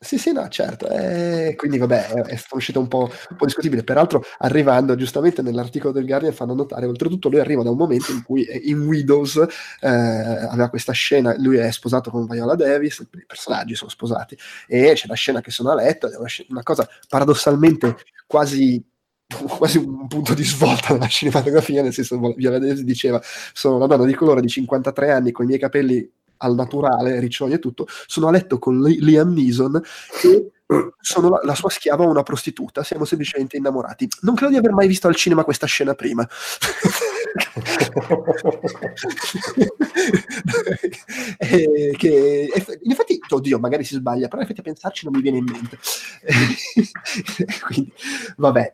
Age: 20-39